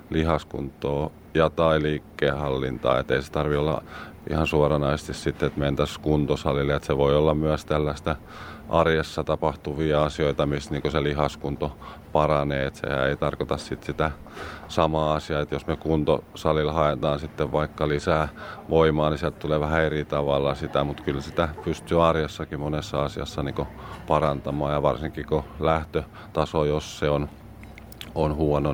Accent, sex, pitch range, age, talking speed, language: native, male, 75-80 Hz, 30-49, 150 wpm, Finnish